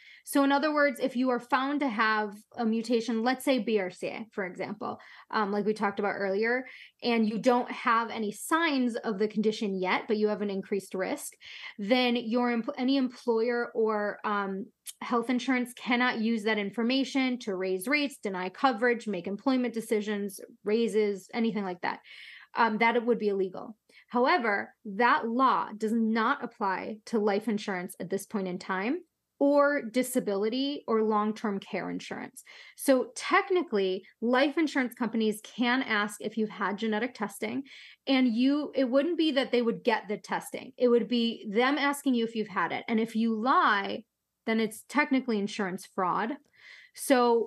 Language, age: English, 20-39